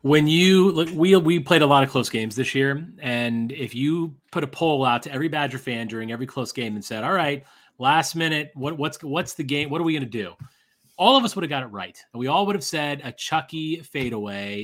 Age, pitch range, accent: 30-49, 120-155 Hz, American